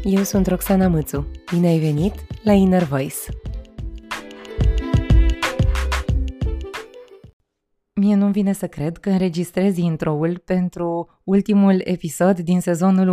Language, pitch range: Romanian, 160-195 Hz